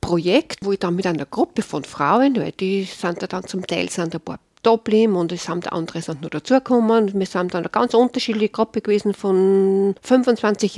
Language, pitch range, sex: English, 185-235 Hz, female